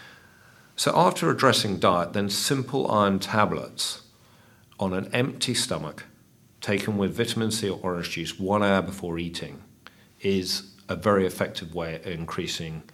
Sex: male